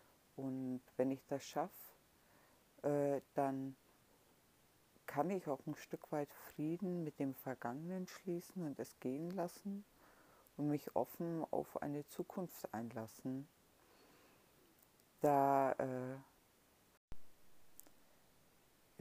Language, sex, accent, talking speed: German, female, German, 95 wpm